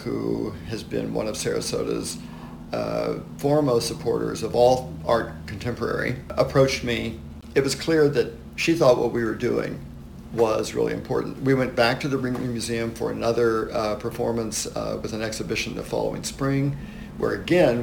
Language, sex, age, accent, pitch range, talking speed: English, male, 50-69, American, 115-140 Hz, 160 wpm